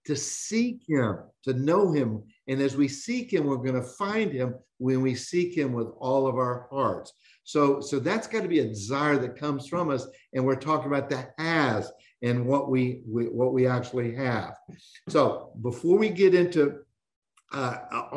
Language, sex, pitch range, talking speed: English, male, 130-175 Hz, 190 wpm